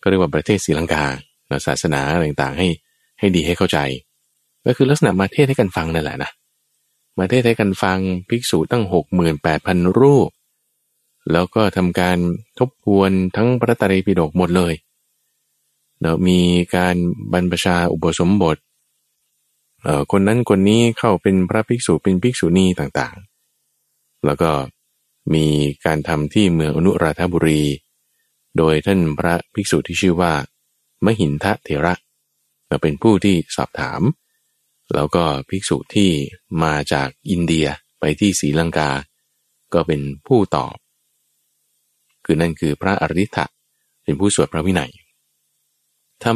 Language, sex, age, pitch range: Thai, male, 20-39, 75-100 Hz